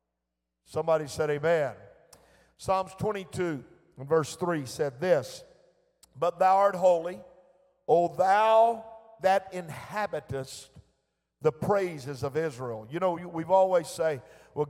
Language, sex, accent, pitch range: English, male, American, 155-220 Hz